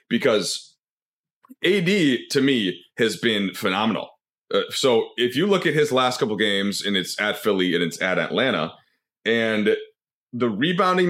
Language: English